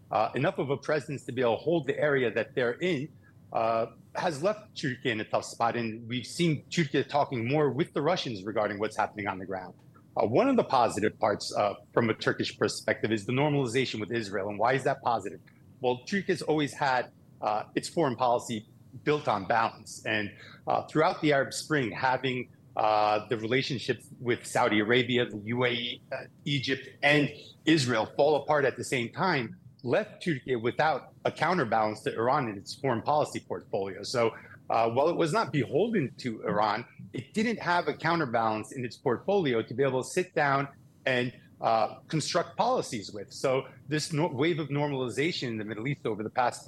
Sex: male